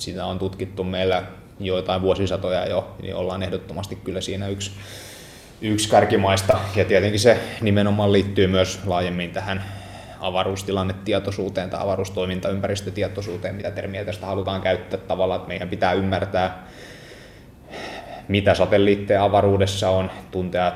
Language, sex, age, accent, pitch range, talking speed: Finnish, male, 20-39, native, 90-95 Hz, 120 wpm